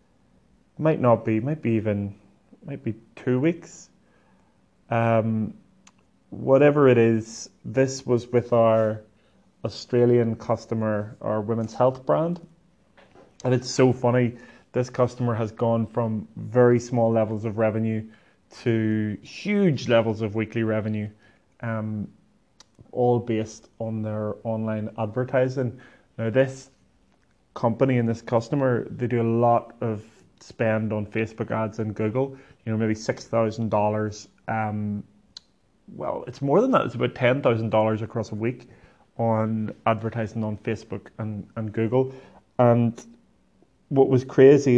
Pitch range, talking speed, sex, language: 110-125 Hz, 135 wpm, male, English